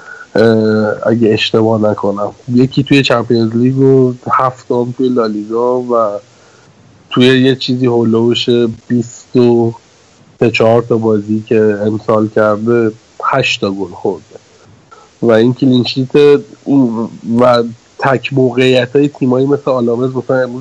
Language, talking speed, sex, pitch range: Persian, 115 wpm, male, 115-135 Hz